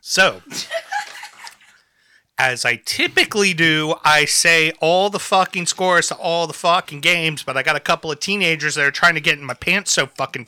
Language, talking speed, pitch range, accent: English, 190 wpm, 130-165 Hz, American